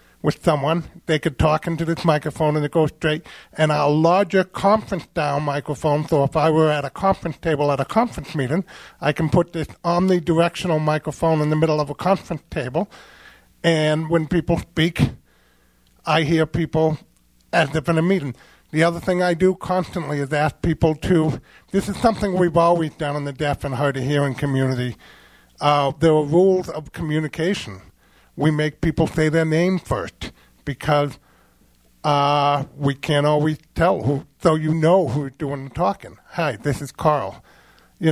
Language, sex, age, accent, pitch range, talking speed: English, male, 50-69, American, 145-175 Hz, 175 wpm